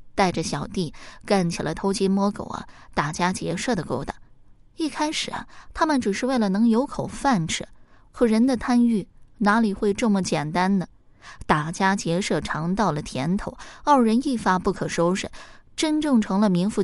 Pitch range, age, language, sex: 175-235 Hz, 20-39, Chinese, female